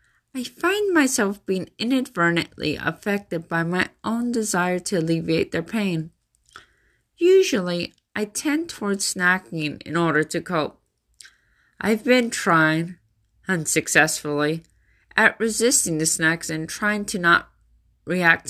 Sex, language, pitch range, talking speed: female, English, 165-215 Hz, 115 wpm